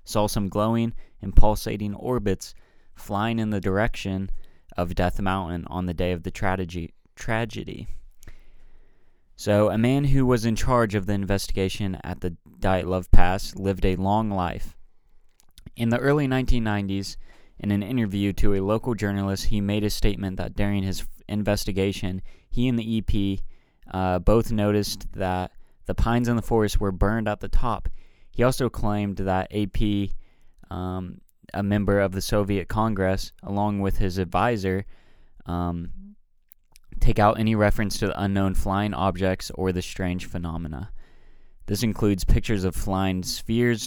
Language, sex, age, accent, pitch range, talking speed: English, male, 20-39, American, 90-105 Hz, 155 wpm